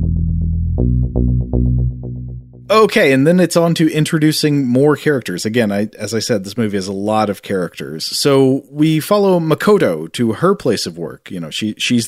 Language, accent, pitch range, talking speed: English, American, 100-130 Hz, 170 wpm